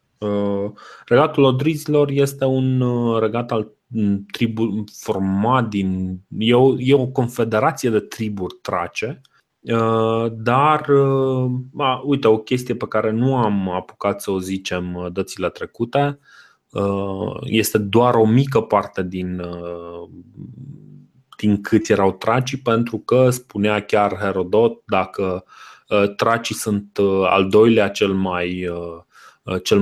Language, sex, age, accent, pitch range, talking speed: Romanian, male, 20-39, native, 100-125 Hz, 110 wpm